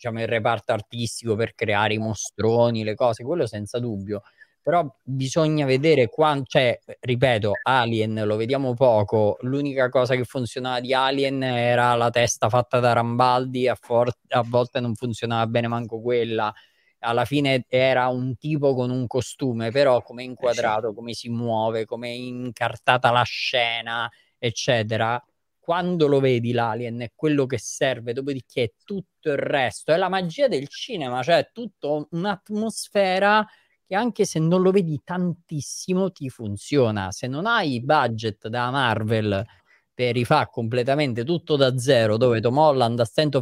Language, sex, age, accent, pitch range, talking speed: Italian, male, 20-39, native, 115-150 Hz, 155 wpm